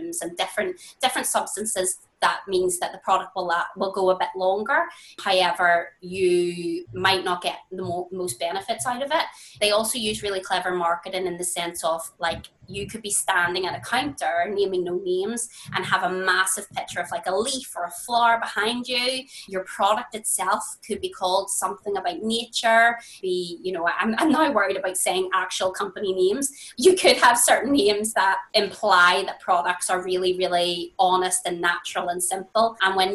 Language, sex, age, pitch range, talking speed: English, female, 20-39, 180-230 Hz, 185 wpm